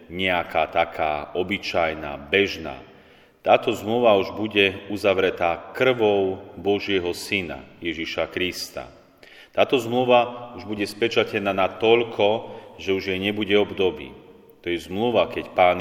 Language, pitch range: Slovak, 90-105 Hz